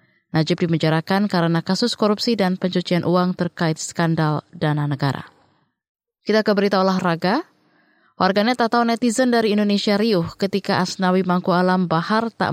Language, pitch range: Indonesian, 165-200 Hz